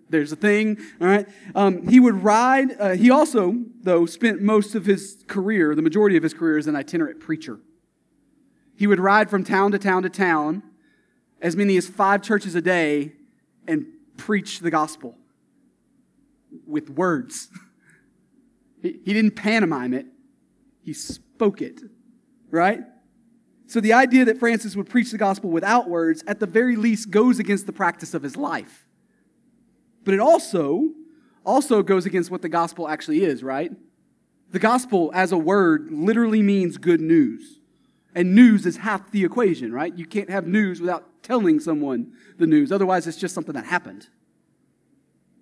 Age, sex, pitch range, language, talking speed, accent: 30-49, male, 175-245 Hz, English, 165 wpm, American